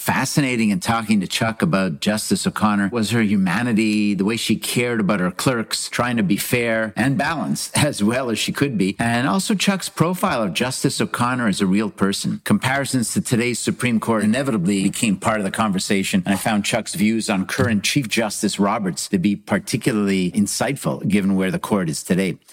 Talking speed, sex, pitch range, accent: 190 wpm, male, 100-140 Hz, American